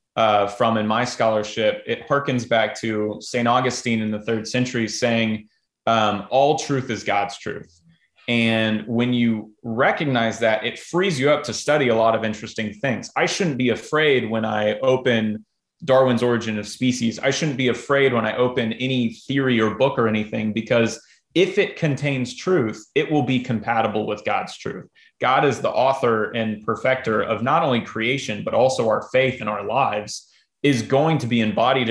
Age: 30-49